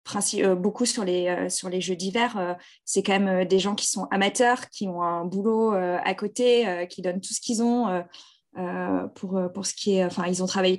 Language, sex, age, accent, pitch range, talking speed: French, female, 20-39, French, 190-235 Hz, 200 wpm